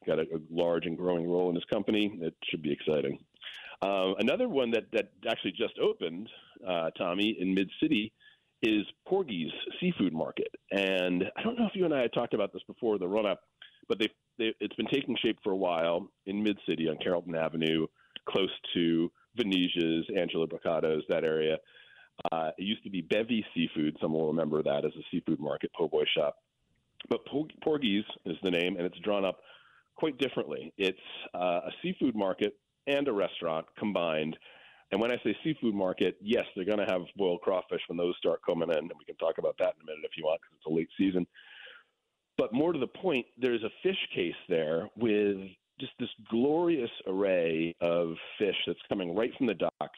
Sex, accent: male, American